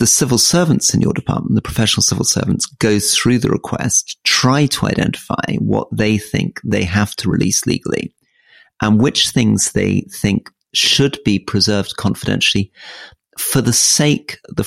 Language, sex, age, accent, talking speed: English, male, 40-59, British, 155 wpm